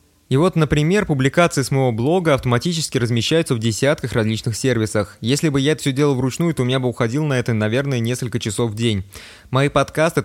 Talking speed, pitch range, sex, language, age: 200 wpm, 115-145 Hz, male, Russian, 20-39